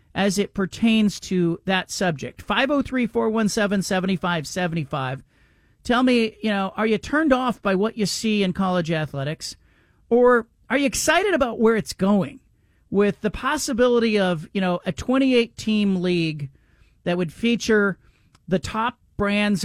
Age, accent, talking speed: 40-59, American, 145 wpm